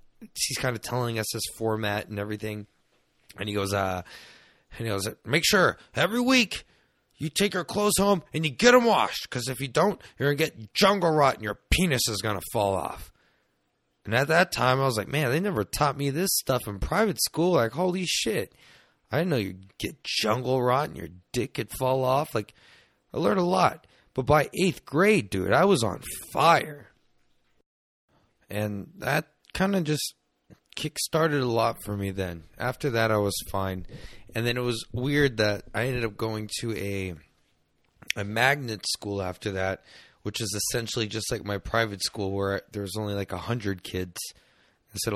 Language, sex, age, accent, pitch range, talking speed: English, male, 30-49, American, 100-135 Hz, 195 wpm